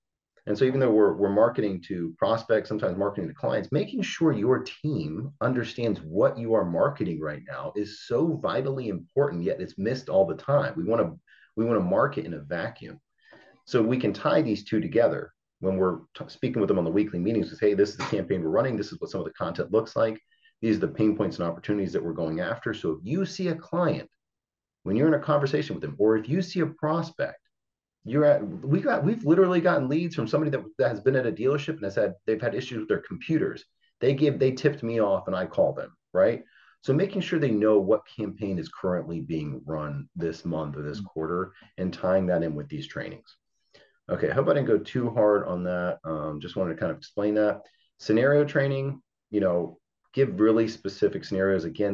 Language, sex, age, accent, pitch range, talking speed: English, male, 40-59, American, 95-150 Hz, 225 wpm